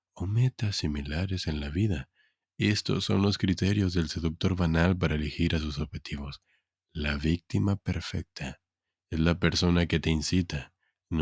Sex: male